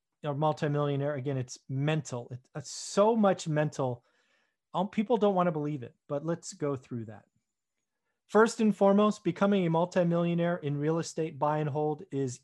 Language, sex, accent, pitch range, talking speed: English, male, American, 140-180 Hz, 160 wpm